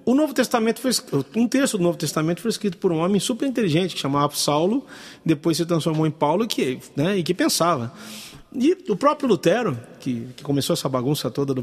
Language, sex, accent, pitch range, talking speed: Portuguese, male, Brazilian, 135-190 Hz, 205 wpm